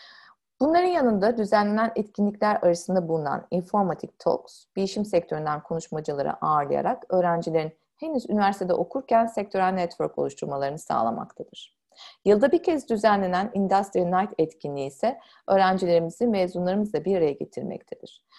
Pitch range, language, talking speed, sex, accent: 165-220 Hz, Turkish, 110 wpm, female, native